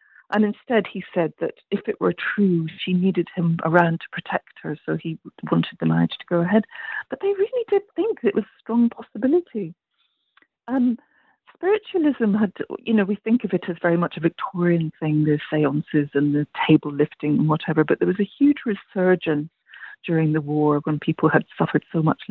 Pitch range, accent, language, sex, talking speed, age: 160-225 Hz, British, English, female, 195 wpm, 40-59